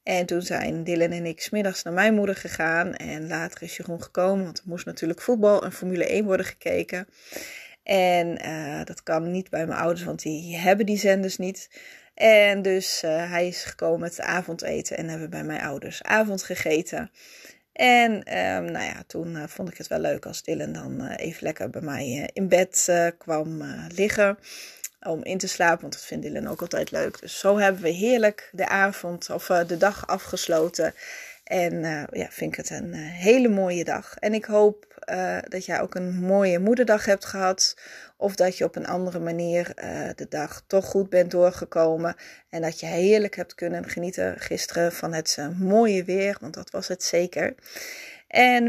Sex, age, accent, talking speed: female, 20-39, Dutch, 195 wpm